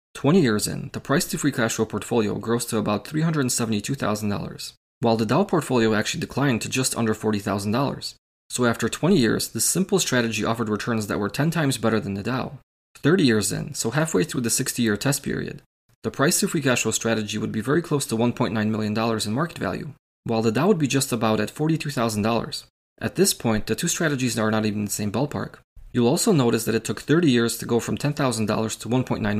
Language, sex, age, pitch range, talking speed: English, male, 20-39, 110-140 Hz, 210 wpm